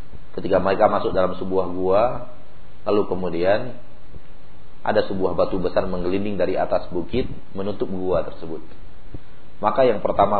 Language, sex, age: Malay, male, 40-59